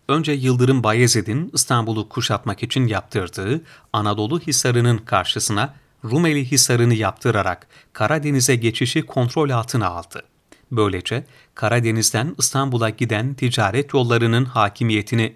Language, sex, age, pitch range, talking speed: Turkish, male, 40-59, 110-135 Hz, 100 wpm